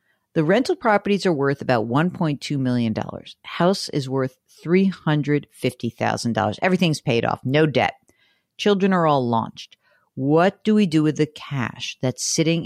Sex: female